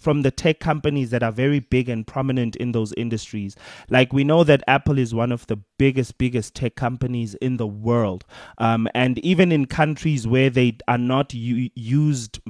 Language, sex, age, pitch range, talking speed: English, male, 30-49, 115-145 Hz, 185 wpm